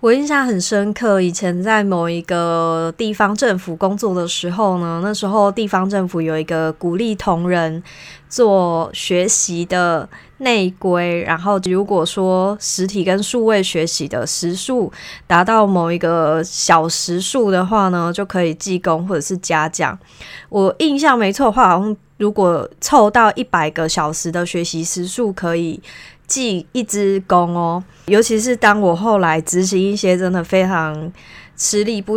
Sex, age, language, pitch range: female, 20-39, Chinese, 170-210 Hz